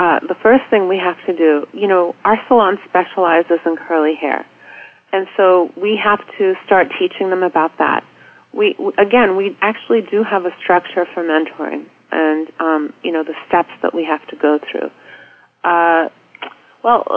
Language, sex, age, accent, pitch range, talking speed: English, female, 30-49, American, 160-190 Hz, 180 wpm